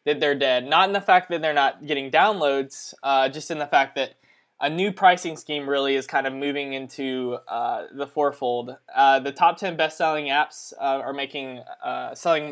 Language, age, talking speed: English, 20-39, 200 wpm